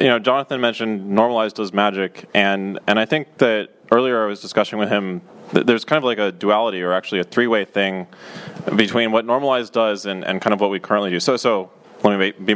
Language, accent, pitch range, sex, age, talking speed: English, American, 90-105 Hz, male, 20-39, 225 wpm